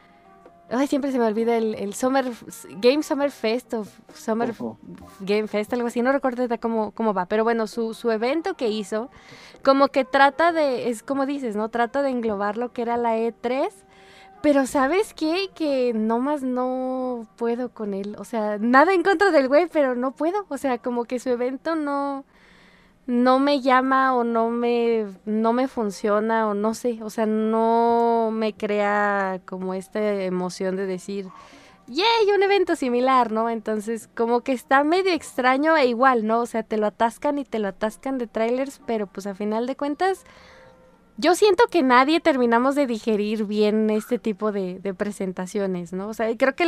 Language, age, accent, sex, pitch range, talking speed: Spanish, 20-39, Mexican, female, 215-270 Hz, 185 wpm